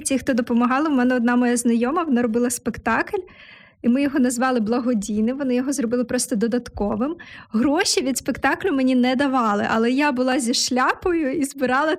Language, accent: Ukrainian, native